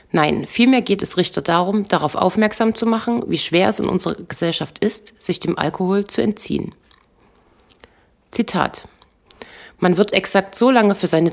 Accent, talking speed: German, 160 wpm